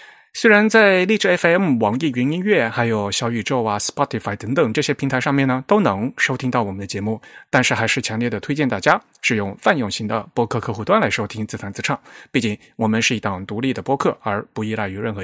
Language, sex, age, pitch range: Chinese, male, 30-49, 110-145 Hz